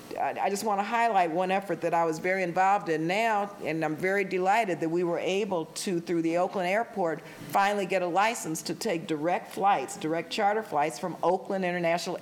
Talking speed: 200 wpm